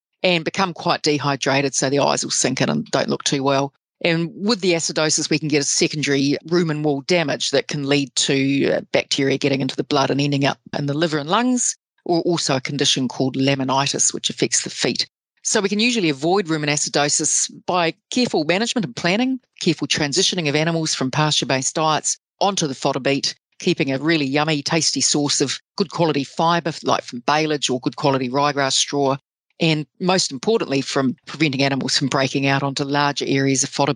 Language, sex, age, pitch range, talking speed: English, female, 40-59, 140-175 Hz, 195 wpm